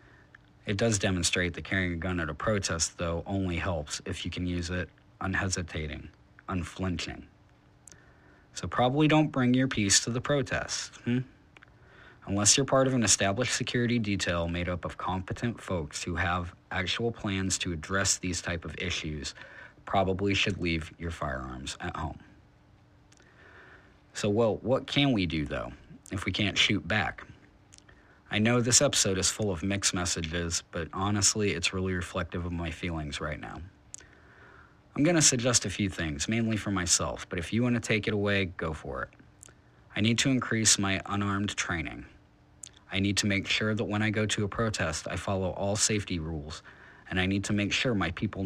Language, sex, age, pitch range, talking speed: English, male, 40-59, 90-110 Hz, 180 wpm